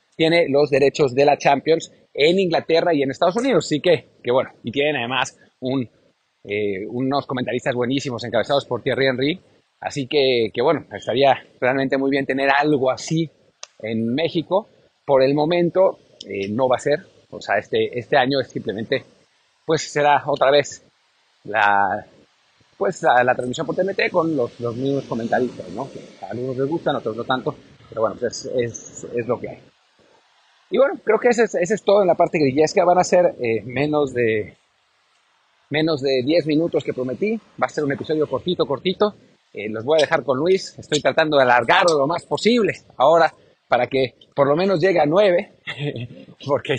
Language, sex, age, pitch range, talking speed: Spanish, male, 30-49, 130-170 Hz, 185 wpm